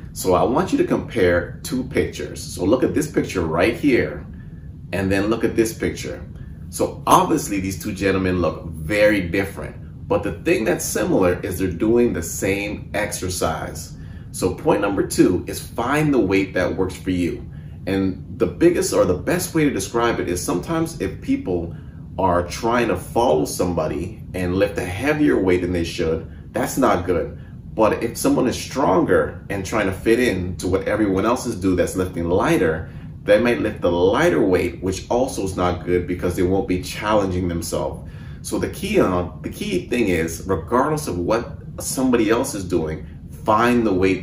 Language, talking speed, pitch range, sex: English, 180 wpm, 85-105 Hz, male